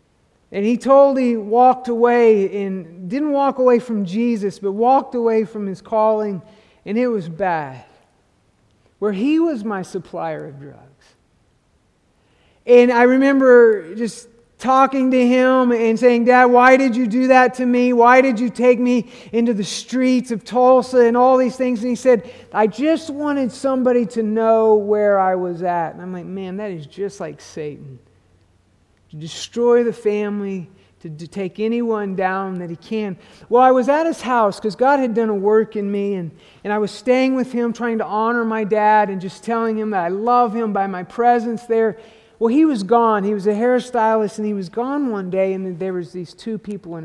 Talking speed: 195 wpm